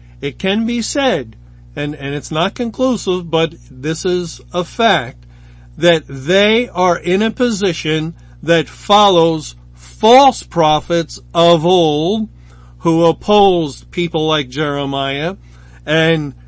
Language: English